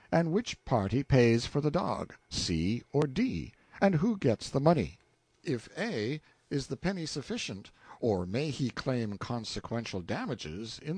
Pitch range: 105-155 Hz